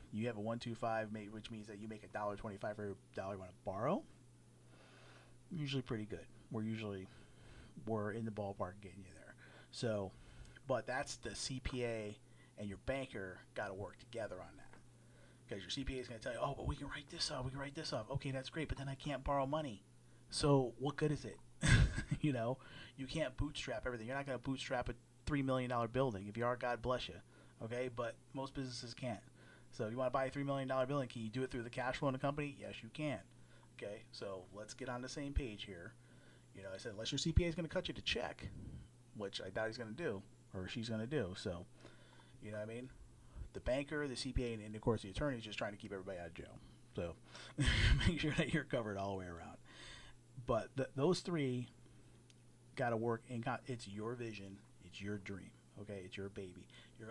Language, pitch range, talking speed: English, 110-135 Hz, 230 wpm